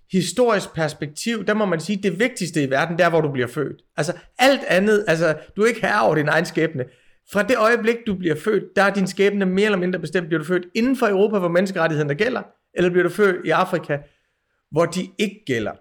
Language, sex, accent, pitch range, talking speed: Danish, male, native, 155-205 Hz, 230 wpm